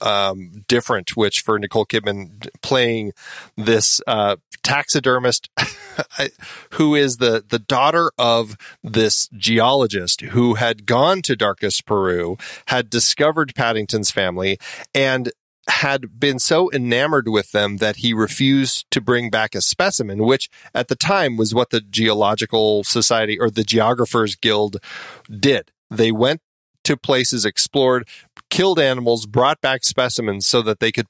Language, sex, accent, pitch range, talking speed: English, male, American, 110-130 Hz, 135 wpm